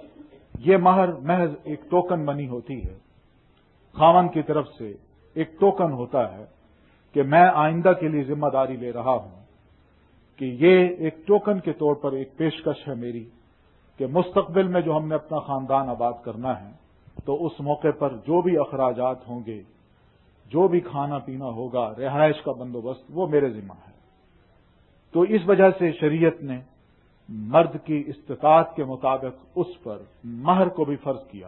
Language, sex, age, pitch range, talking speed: Urdu, male, 50-69, 120-165 Hz, 165 wpm